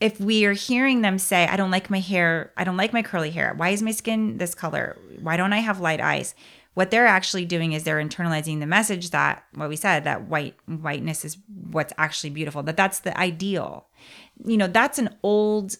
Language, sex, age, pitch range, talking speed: English, female, 30-49, 165-195 Hz, 215 wpm